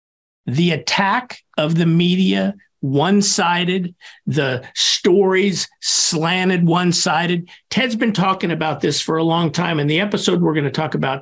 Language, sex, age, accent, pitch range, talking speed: English, male, 50-69, American, 160-195 Hz, 145 wpm